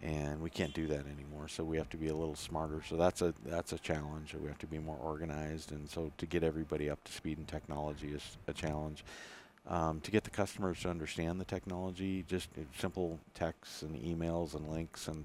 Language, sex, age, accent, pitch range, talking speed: English, male, 50-69, American, 75-85 Hz, 220 wpm